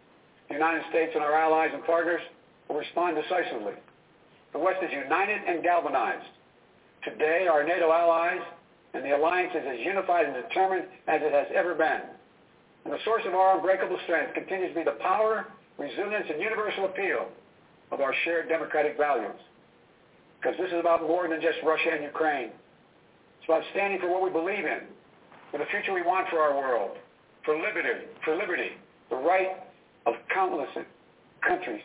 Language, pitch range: English, 155-180 Hz